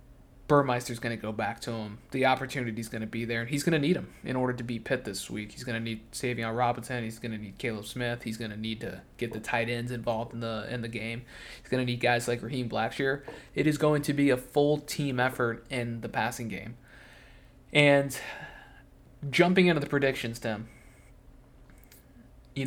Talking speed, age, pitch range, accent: 215 wpm, 20-39, 115-135 Hz, American